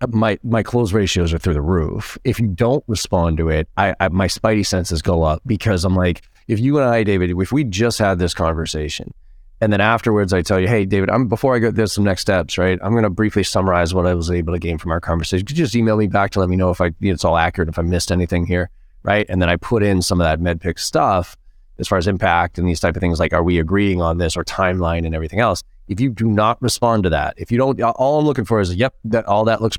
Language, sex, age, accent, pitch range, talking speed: English, male, 30-49, American, 85-110 Hz, 275 wpm